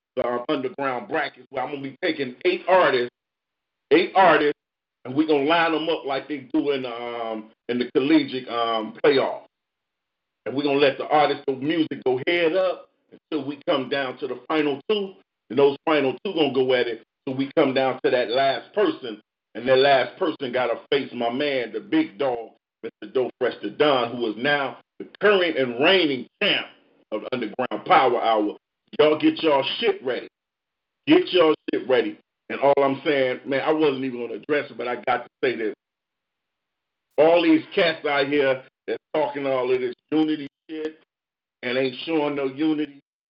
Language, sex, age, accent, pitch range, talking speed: English, male, 40-59, American, 130-160 Hz, 195 wpm